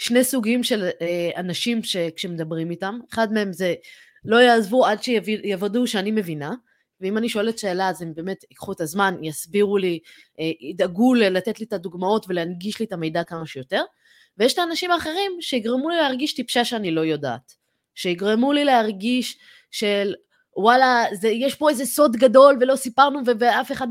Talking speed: 160 wpm